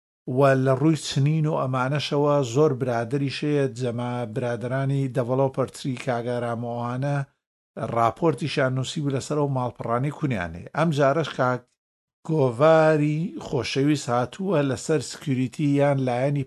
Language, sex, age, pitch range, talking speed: Arabic, male, 50-69, 120-145 Hz, 115 wpm